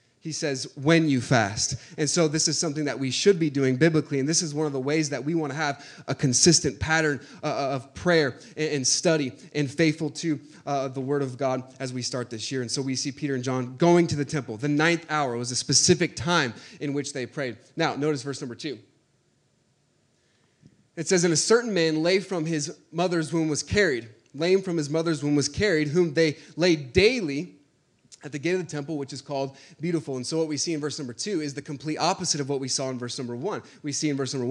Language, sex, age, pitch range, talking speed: English, male, 20-39, 135-160 Hz, 235 wpm